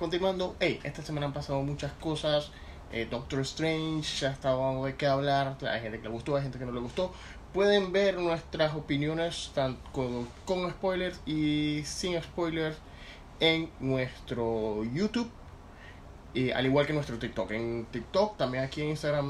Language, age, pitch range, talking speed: Spanish, 20-39, 120-160 Hz, 165 wpm